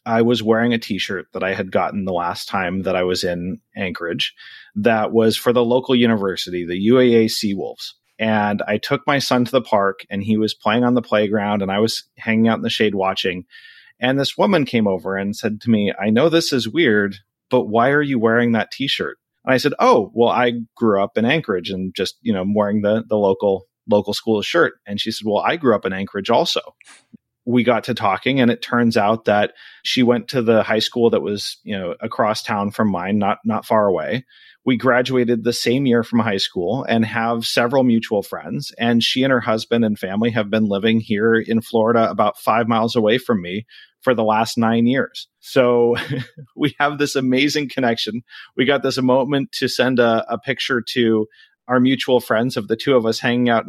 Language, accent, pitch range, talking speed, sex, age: English, American, 105-125 Hz, 215 wpm, male, 30-49